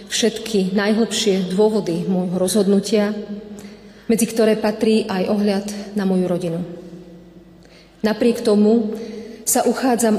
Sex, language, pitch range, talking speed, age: female, Slovak, 195-220 Hz, 100 wpm, 40-59